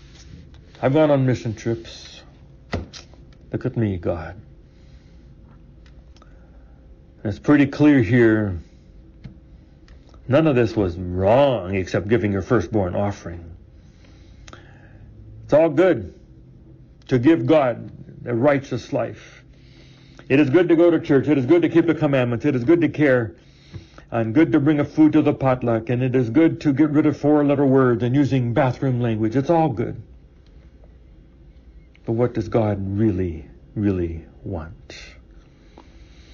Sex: male